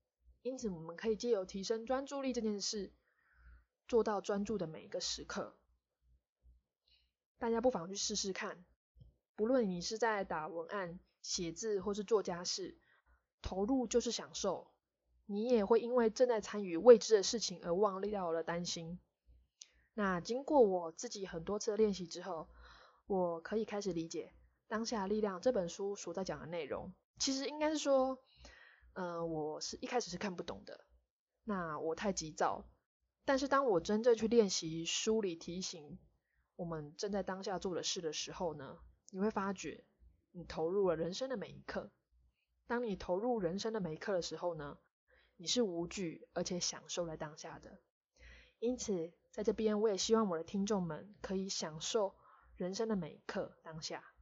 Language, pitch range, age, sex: Chinese, 170-220 Hz, 20-39, female